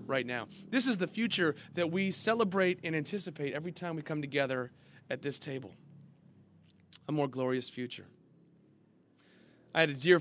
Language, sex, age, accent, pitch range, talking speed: English, male, 30-49, American, 140-190 Hz, 160 wpm